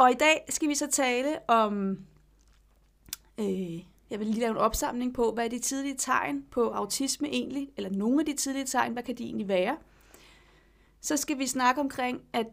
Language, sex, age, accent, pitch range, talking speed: Danish, female, 30-49, native, 205-255 Hz, 195 wpm